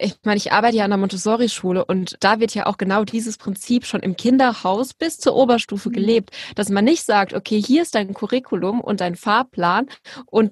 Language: German